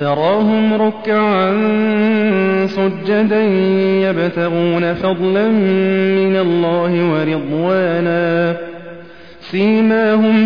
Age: 30-49